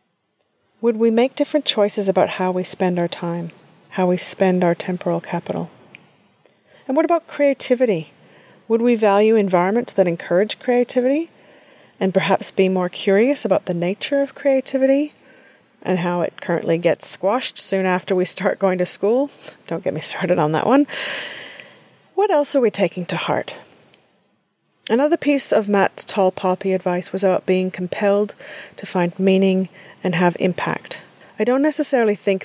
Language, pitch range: English, 180-235 Hz